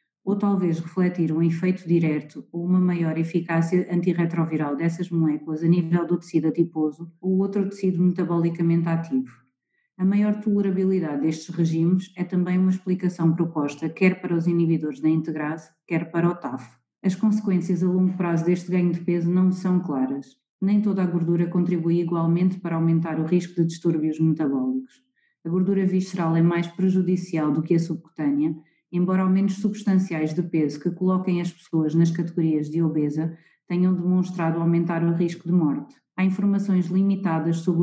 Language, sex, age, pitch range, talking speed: Portuguese, female, 30-49, 165-185 Hz, 165 wpm